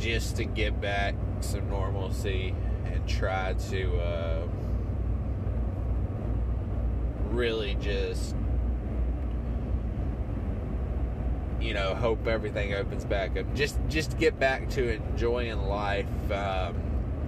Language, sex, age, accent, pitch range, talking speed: English, male, 20-39, American, 90-110 Hz, 95 wpm